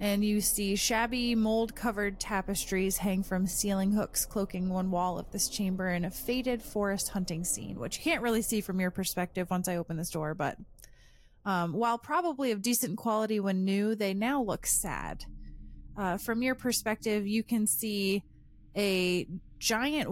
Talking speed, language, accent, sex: 175 wpm, English, American, female